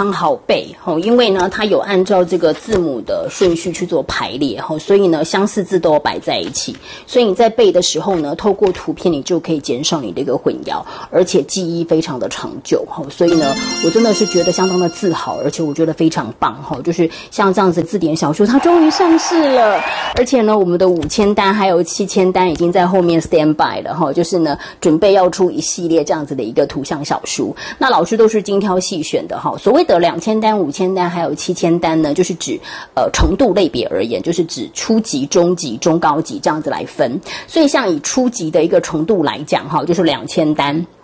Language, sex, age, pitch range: Chinese, female, 30-49, 165-215 Hz